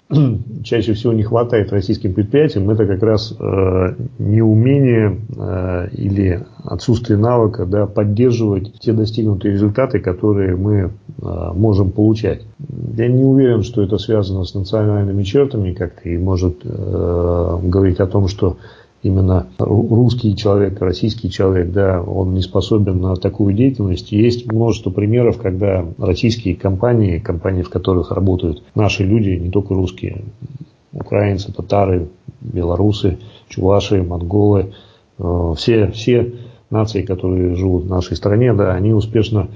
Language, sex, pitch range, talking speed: Russian, male, 95-115 Hz, 130 wpm